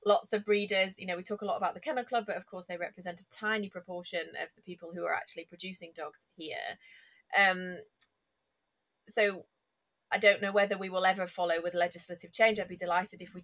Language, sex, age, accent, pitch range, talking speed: English, female, 20-39, British, 180-225 Hz, 215 wpm